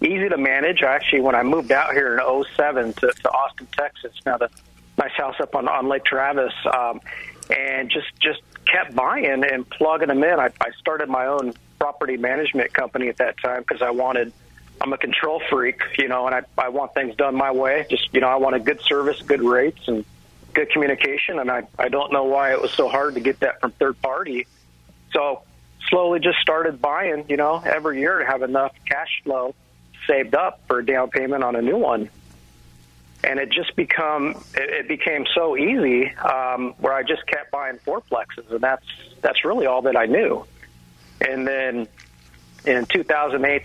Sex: male